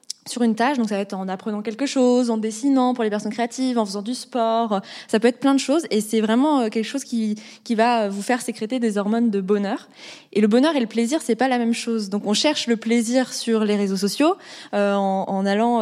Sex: female